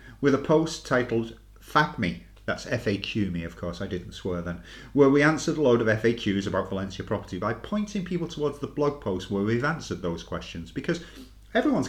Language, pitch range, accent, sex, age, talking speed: English, 100-130 Hz, British, male, 40-59, 195 wpm